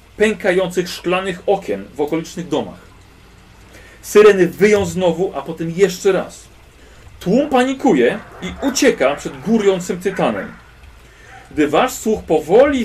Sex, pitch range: male, 140-190 Hz